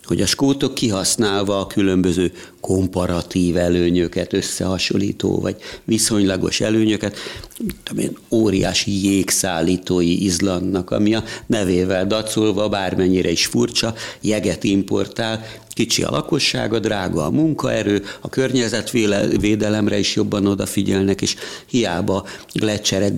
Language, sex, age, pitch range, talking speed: Hungarian, male, 60-79, 90-110 Hz, 105 wpm